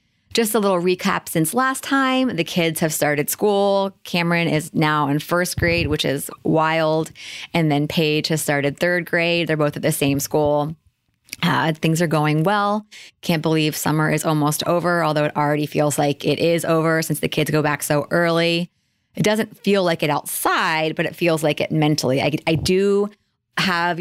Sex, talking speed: female, 190 wpm